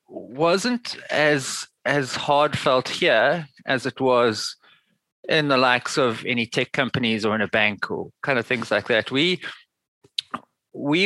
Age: 20-39